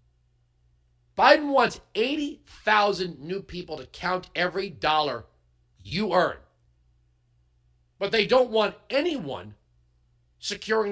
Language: English